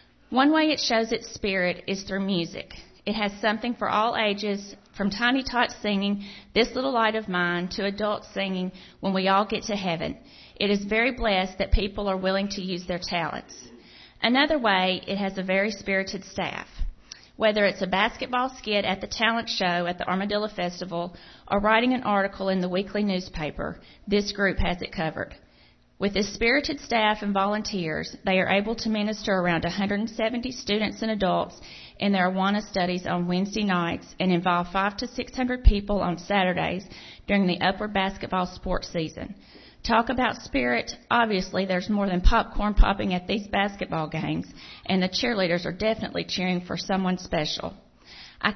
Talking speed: 170 wpm